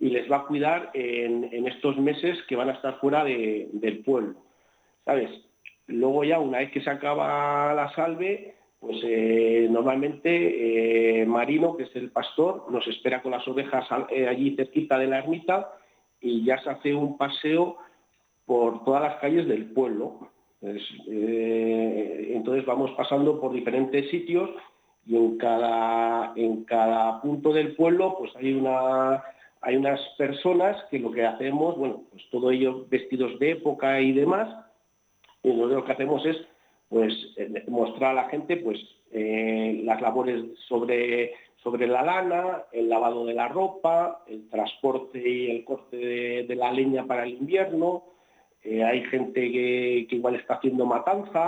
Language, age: Spanish, 40-59